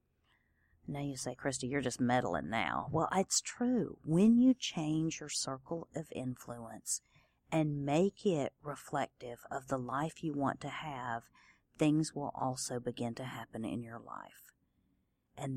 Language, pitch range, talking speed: English, 130-165 Hz, 150 wpm